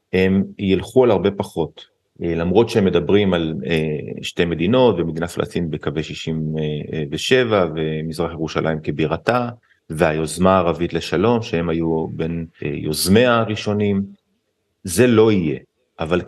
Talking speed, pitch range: 110 wpm, 85-105 Hz